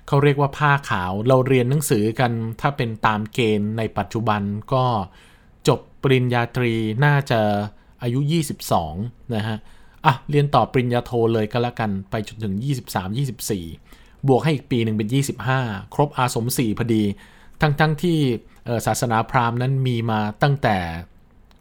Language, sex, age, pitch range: Thai, male, 20-39, 105-140 Hz